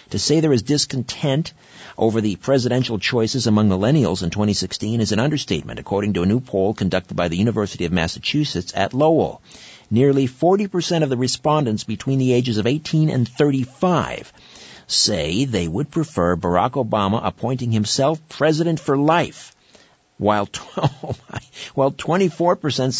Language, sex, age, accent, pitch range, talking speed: English, male, 50-69, American, 105-145 Hz, 140 wpm